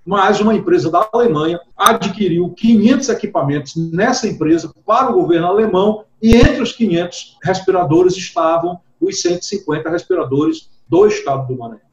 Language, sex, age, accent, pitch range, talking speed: English, male, 40-59, Brazilian, 170-235 Hz, 135 wpm